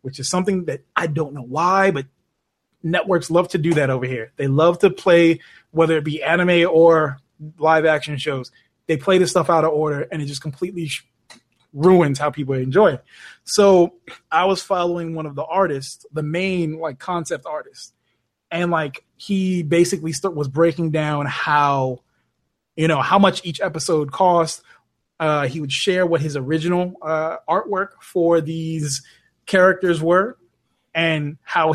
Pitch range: 145-175 Hz